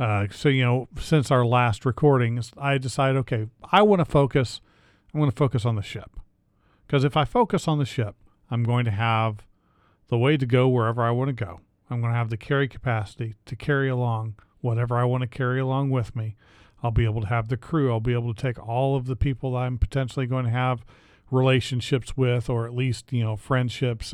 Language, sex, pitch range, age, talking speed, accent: English, male, 110-135 Hz, 40-59, 220 wpm, American